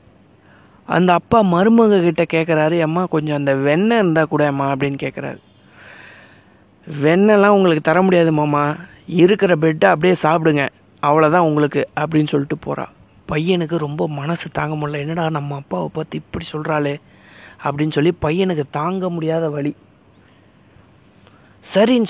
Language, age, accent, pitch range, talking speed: Tamil, 30-49, native, 145-180 Hz, 120 wpm